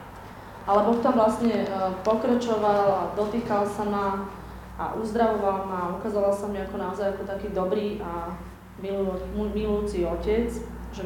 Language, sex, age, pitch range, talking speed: Slovak, female, 20-39, 180-205 Hz, 140 wpm